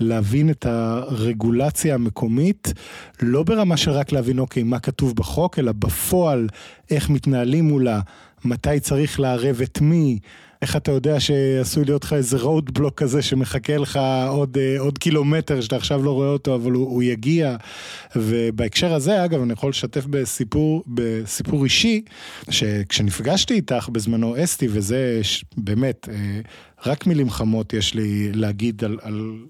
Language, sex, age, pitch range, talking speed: Hebrew, male, 20-39, 115-160 Hz, 140 wpm